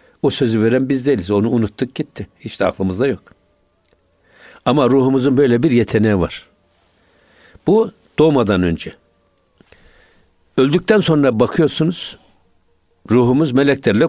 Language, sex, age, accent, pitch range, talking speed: Turkish, male, 60-79, native, 95-135 Hz, 105 wpm